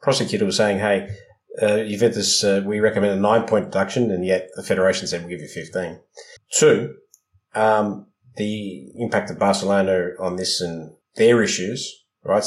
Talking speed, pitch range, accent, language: 160 wpm, 95-120 Hz, Australian, English